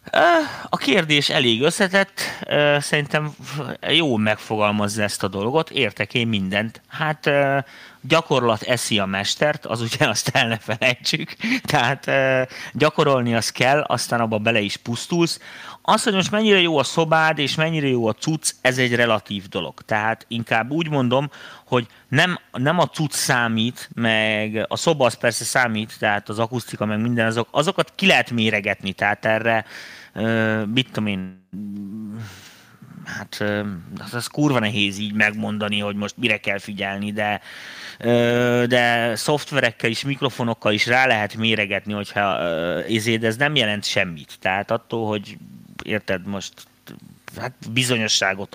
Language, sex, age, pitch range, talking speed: Hungarian, male, 30-49, 105-140 Hz, 135 wpm